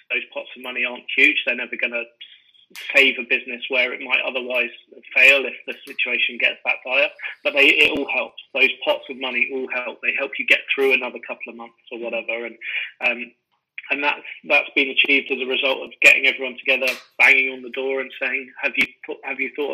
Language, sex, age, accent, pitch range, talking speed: English, male, 20-39, British, 120-170 Hz, 220 wpm